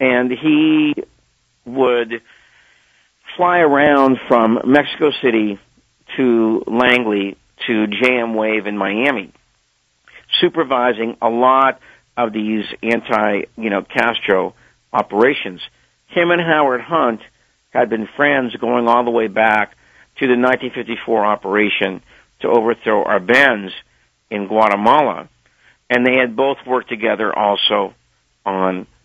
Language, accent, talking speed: English, American, 110 wpm